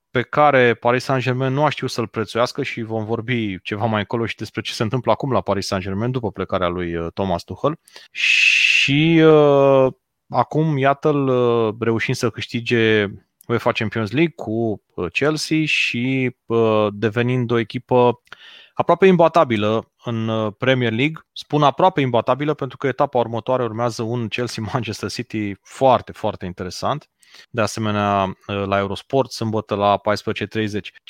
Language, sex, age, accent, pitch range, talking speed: Romanian, male, 30-49, native, 110-140 Hz, 140 wpm